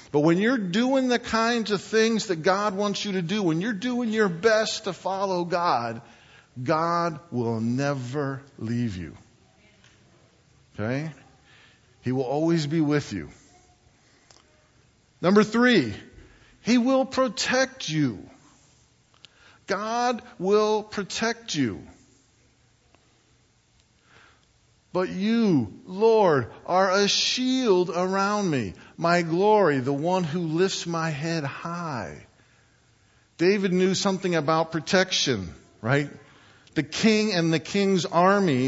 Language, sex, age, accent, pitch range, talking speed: English, male, 50-69, American, 125-200 Hz, 115 wpm